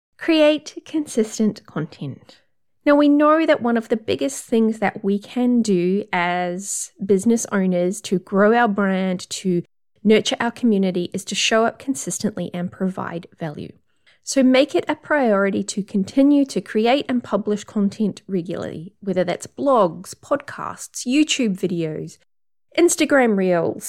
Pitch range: 190-260 Hz